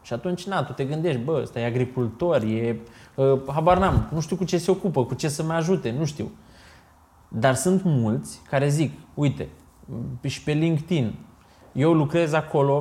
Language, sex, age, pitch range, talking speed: Romanian, male, 20-39, 120-155 Hz, 175 wpm